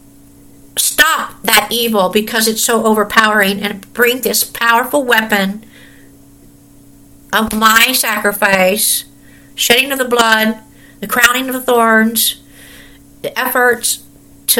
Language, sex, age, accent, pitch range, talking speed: English, female, 50-69, American, 205-270 Hz, 110 wpm